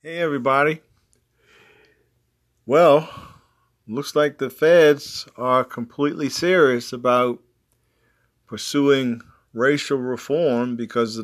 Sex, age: male, 40-59